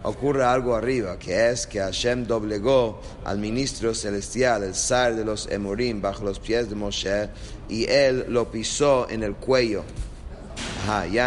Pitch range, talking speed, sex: 100-120 Hz, 160 wpm, male